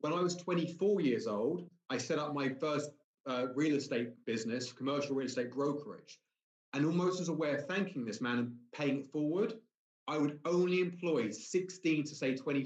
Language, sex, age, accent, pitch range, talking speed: English, male, 30-49, British, 140-180 Hz, 185 wpm